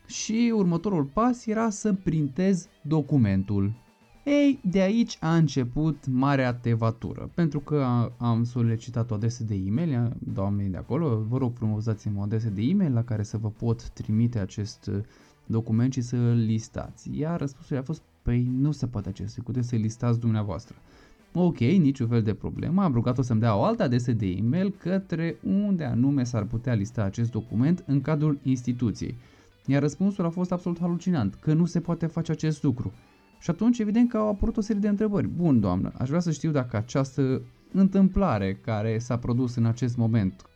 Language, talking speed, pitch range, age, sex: Romanian, 180 wpm, 110-160 Hz, 20-39, male